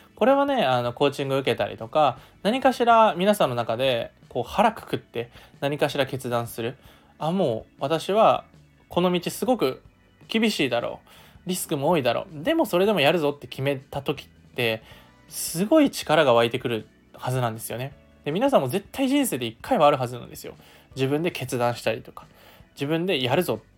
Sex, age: male, 20-39